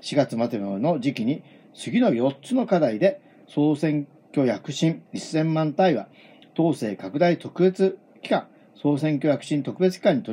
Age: 40-59